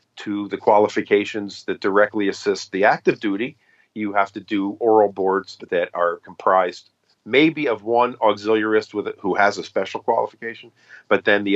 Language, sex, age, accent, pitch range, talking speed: English, male, 50-69, American, 100-120 Hz, 155 wpm